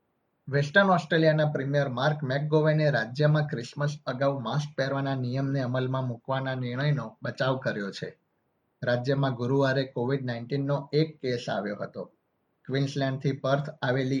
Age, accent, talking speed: 20-39, native, 45 wpm